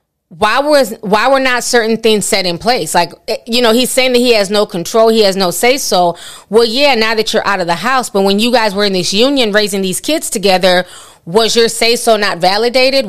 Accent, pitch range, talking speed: American, 195-245 Hz, 240 wpm